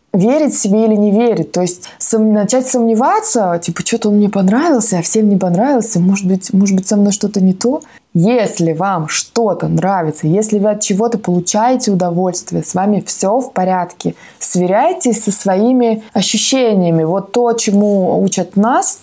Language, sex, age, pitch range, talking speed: Russian, female, 20-39, 175-225 Hz, 160 wpm